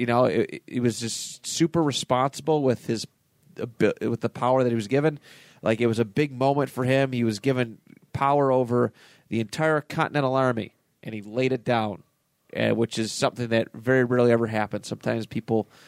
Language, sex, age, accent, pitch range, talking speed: English, male, 30-49, American, 115-150 Hz, 185 wpm